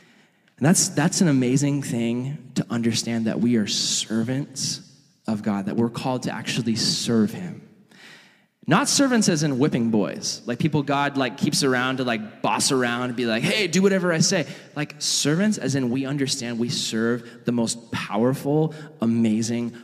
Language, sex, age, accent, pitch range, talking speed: English, male, 20-39, American, 115-160 Hz, 170 wpm